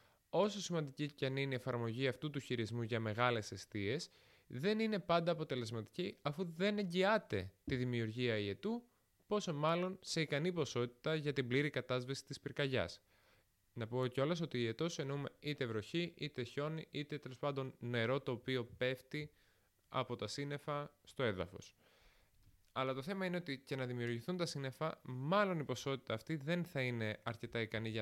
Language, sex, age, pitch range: Greek, male, 20-39, 110-150 Hz